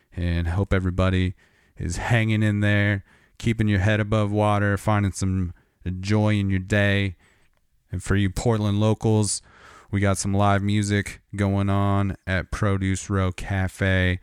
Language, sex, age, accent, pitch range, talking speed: English, male, 30-49, American, 90-105 Hz, 145 wpm